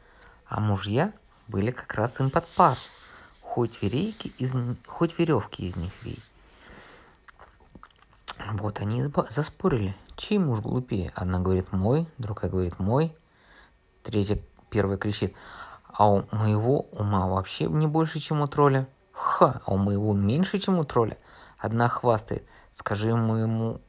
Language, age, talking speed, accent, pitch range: Russian, 20-39, 130 wpm, native, 100-140 Hz